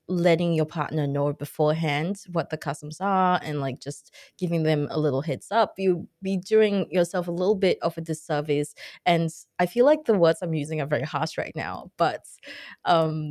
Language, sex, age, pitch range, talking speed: English, female, 20-39, 150-205 Hz, 195 wpm